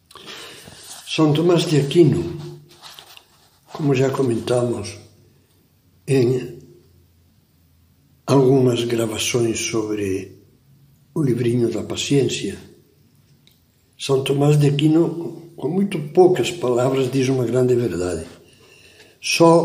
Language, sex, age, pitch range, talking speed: Portuguese, male, 60-79, 120-155 Hz, 85 wpm